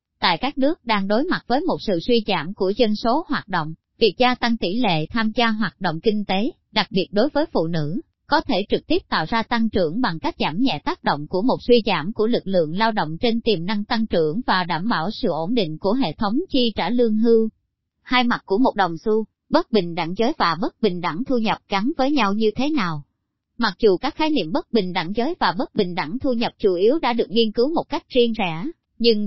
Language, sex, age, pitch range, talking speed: Vietnamese, male, 20-39, 195-250 Hz, 250 wpm